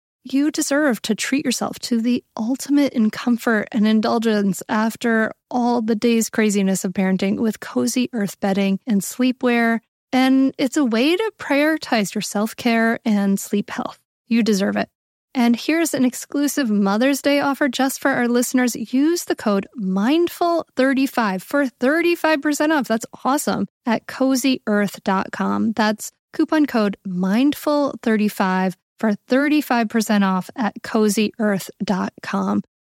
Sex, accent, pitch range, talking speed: female, American, 205-265 Hz, 130 wpm